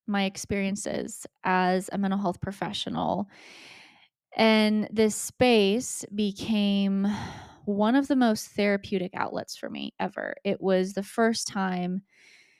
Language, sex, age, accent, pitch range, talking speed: English, female, 20-39, American, 190-225 Hz, 120 wpm